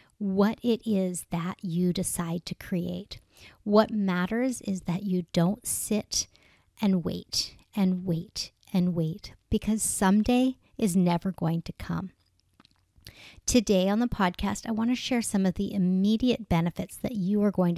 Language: English